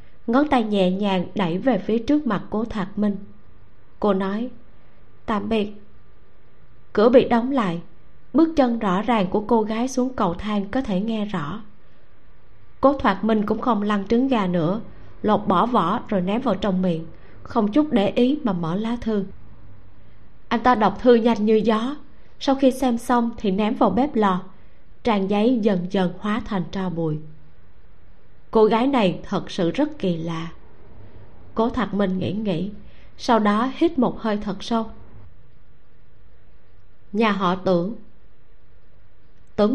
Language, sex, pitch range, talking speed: Vietnamese, female, 175-230 Hz, 160 wpm